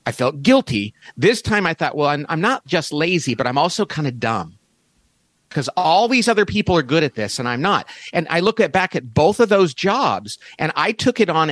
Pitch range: 130-190 Hz